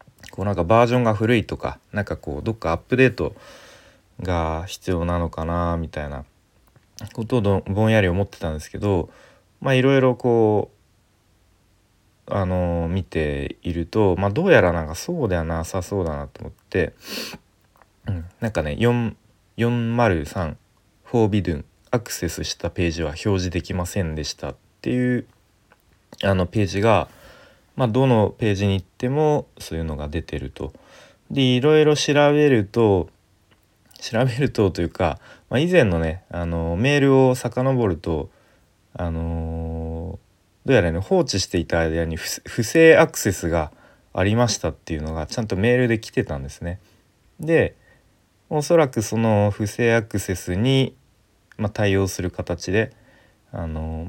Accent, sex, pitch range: native, male, 85-115 Hz